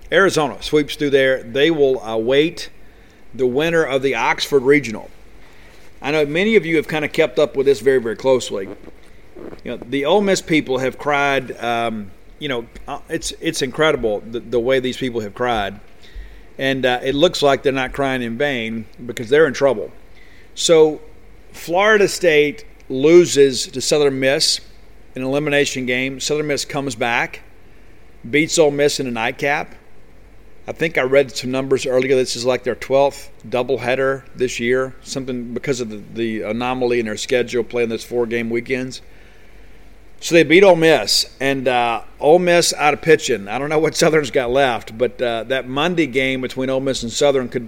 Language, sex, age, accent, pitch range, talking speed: English, male, 50-69, American, 125-150 Hz, 180 wpm